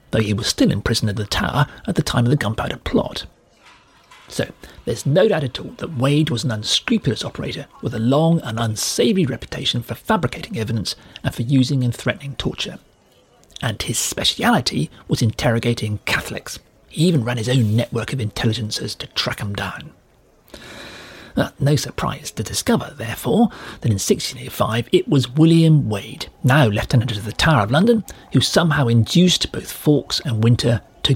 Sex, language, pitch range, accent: male, English, 110-150 Hz, British